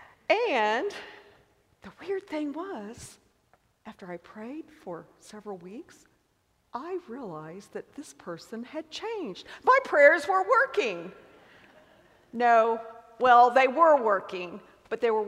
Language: English